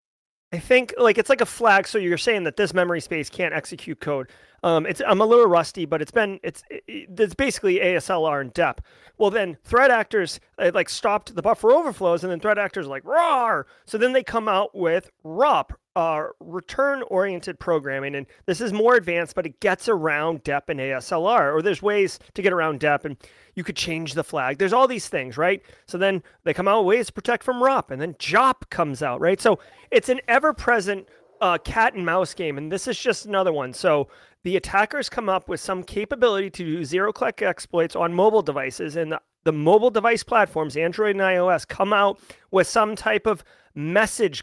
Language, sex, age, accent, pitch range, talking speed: English, male, 30-49, American, 160-215 Hz, 205 wpm